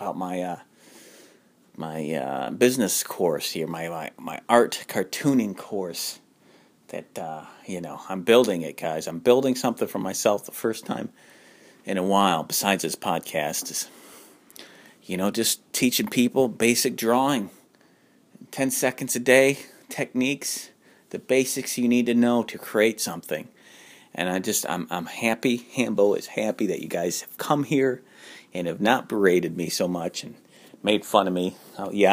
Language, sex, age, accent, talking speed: English, male, 40-59, American, 160 wpm